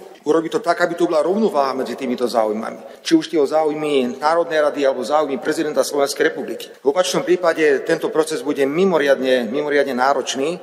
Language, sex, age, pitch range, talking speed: Slovak, male, 40-59, 130-160 Hz, 175 wpm